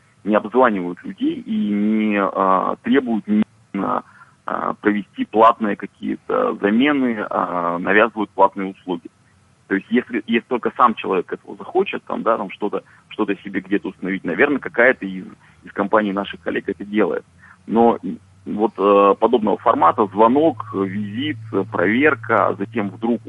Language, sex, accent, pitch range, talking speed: Russian, male, native, 100-115 Hz, 135 wpm